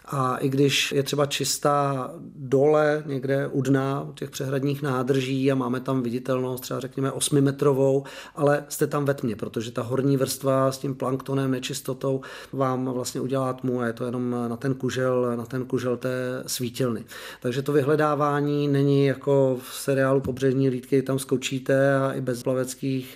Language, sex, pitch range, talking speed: Czech, male, 125-140 Hz, 170 wpm